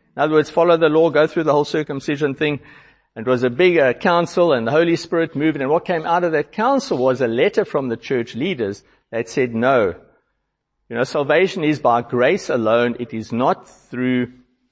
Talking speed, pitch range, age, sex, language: 210 wpm, 125-175 Hz, 60-79, male, English